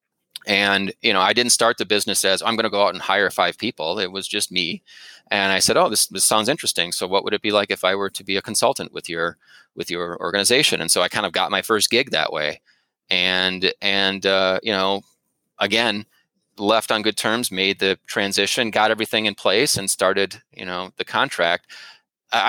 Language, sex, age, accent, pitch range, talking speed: English, male, 30-49, American, 95-110 Hz, 220 wpm